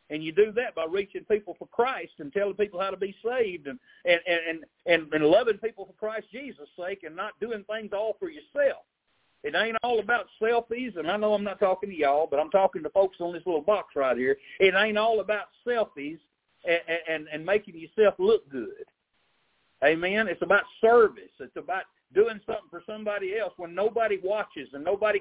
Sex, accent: male, American